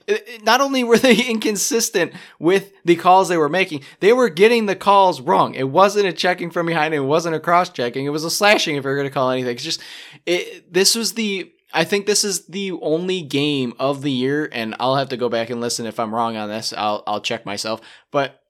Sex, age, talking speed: male, 20-39, 235 wpm